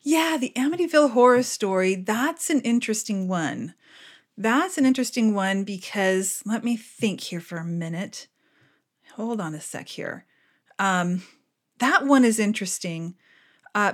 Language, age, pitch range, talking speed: English, 40-59, 185-255 Hz, 140 wpm